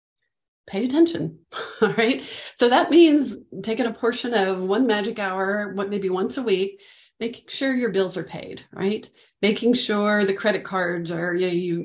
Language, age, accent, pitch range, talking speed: English, 40-59, American, 180-225 Hz, 175 wpm